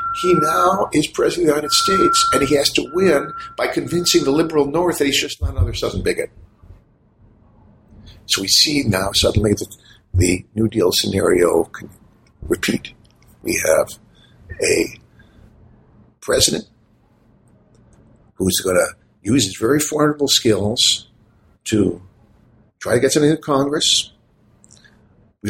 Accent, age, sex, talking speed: American, 60-79, male, 135 wpm